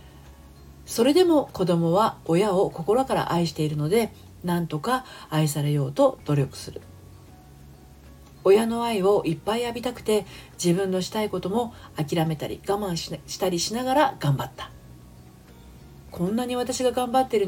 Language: Japanese